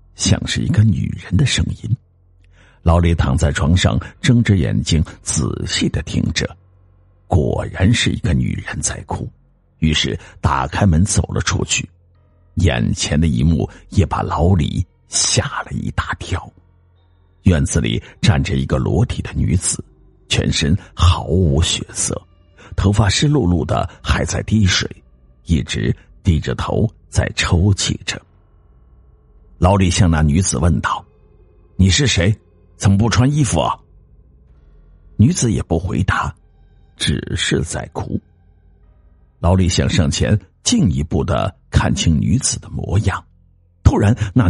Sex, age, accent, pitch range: male, 60-79, native, 85-105 Hz